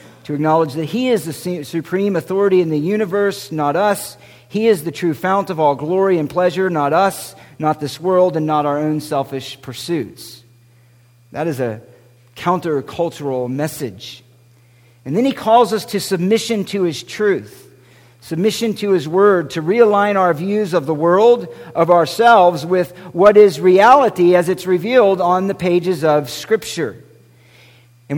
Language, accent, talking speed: English, American, 160 wpm